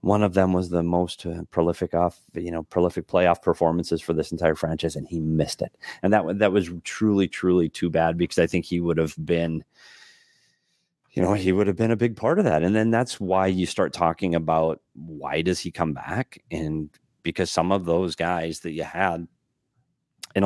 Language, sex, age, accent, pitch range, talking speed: English, male, 30-49, American, 85-105 Hz, 210 wpm